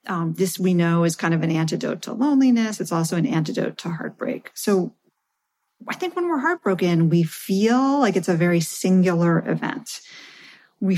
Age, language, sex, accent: 40-59, English, female, American